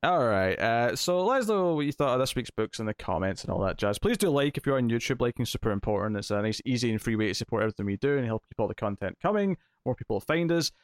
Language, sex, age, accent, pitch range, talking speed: English, male, 20-39, British, 110-155 Hz, 300 wpm